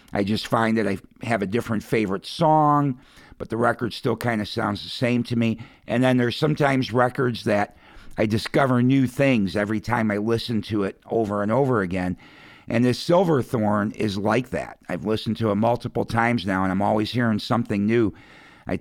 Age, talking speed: 50-69, 195 wpm